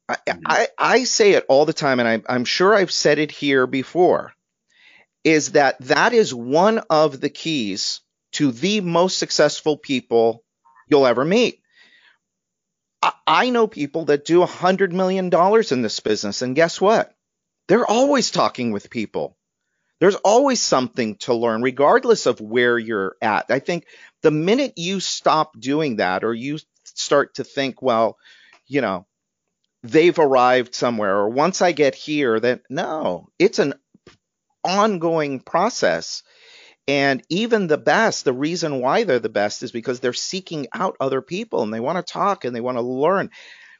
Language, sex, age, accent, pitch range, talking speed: English, male, 40-59, American, 130-190 Hz, 165 wpm